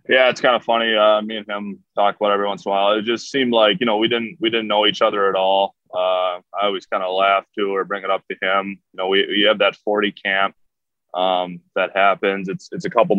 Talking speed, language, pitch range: 280 wpm, English, 95-100 Hz